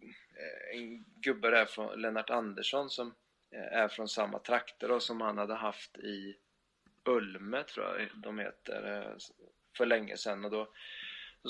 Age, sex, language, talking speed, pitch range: 20-39, male, Swedish, 145 wpm, 105-120 Hz